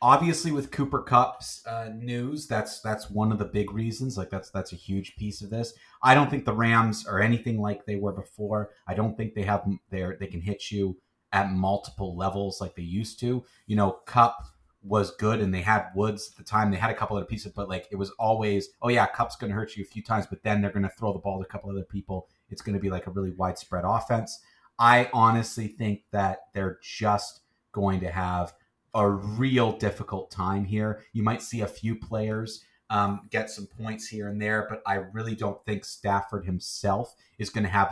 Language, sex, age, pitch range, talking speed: English, male, 30-49, 95-110 Hz, 225 wpm